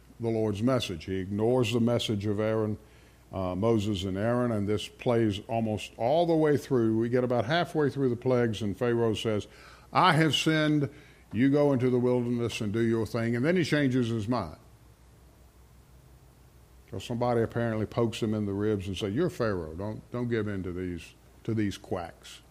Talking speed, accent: 185 wpm, American